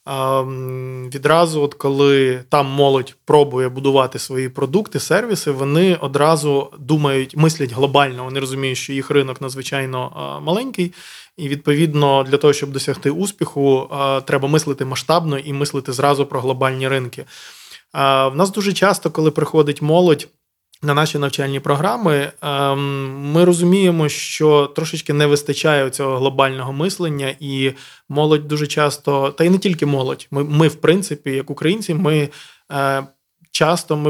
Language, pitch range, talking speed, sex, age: Ukrainian, 135-155 Hz, 130 wpm, male, 20-39